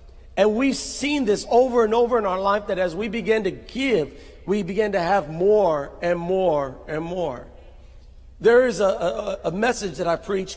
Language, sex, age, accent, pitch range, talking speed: English, male, 50-69, American, 160-240 Hz, 185 wpm